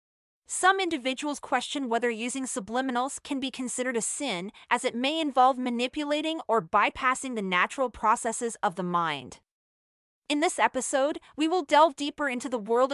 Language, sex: English, female